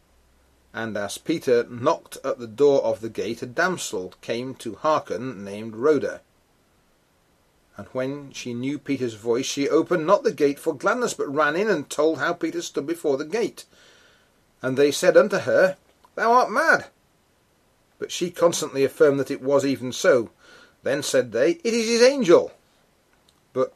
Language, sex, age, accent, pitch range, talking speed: English, male, 40-59, British, 120-175 Hz, 165 wpm